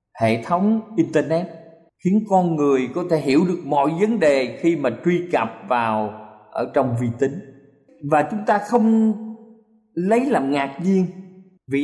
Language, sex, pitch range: Thai, male, 150-205 Hz